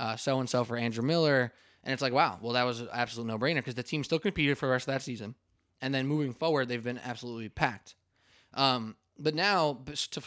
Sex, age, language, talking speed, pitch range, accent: male, 20-39, English, 220 wpm, 115-145 Hz, American